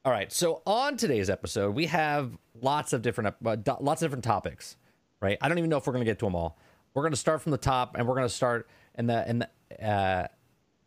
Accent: American